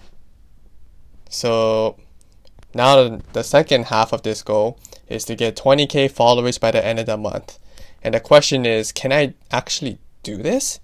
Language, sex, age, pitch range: Japanese, male, 20-39, 105-130 Hz